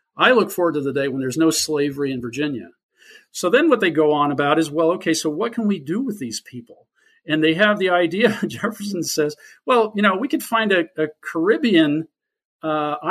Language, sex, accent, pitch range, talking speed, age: English, male, American, 160-235 Hz, 215 wpm, 50-69